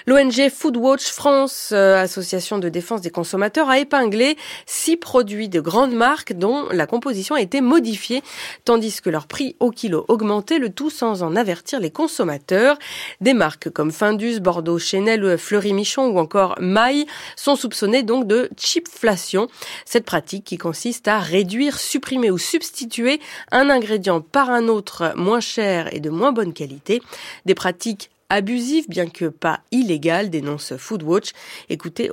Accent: French